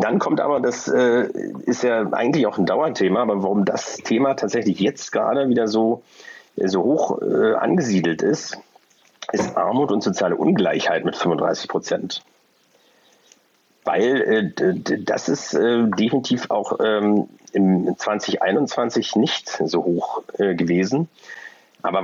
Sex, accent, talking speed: male, German, 135 wpm